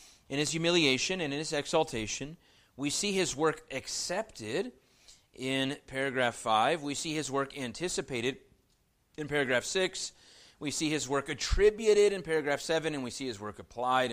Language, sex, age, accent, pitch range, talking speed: English, male, 30-49, American, 105-160 Hz, 155 wpm